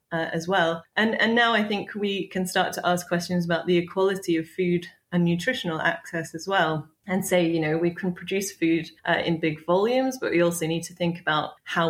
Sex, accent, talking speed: female, British, 220 wpm